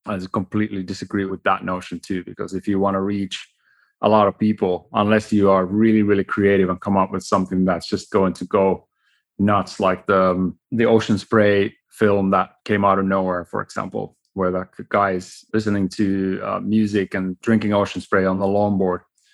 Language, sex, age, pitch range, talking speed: English, male, 30-49, 95-110 Hz, 190 wpm